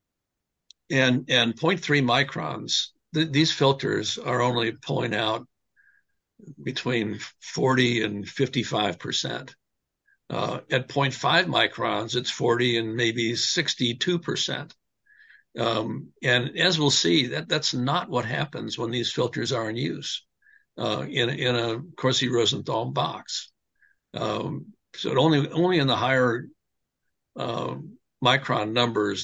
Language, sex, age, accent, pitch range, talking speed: English, male, 60-79, American, 115-145 Hz, 115 wpm